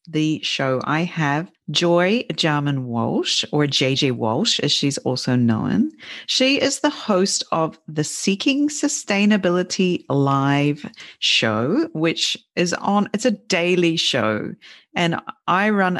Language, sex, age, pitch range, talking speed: English, female, 40-59, 140-180 Hz, 130 wpm